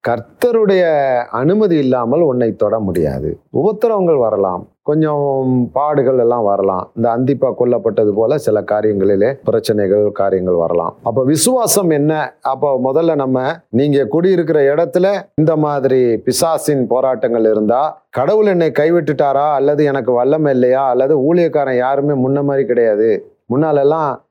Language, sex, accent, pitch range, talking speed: Tamil, male, native, 130-165 Hz, 120 wpm